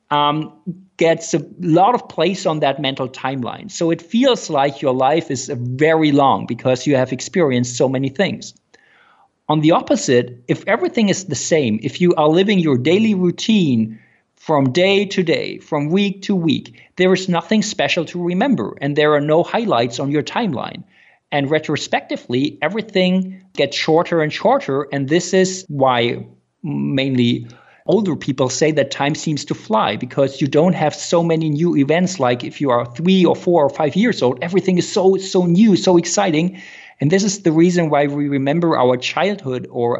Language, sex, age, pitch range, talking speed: English, male, 50-69, 130-175 Hz, 180 wpm